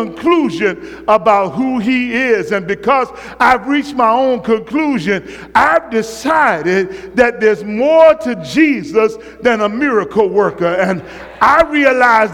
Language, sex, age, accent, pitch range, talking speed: English, male, 50-69, American, 245-330 Hz, 125 wpm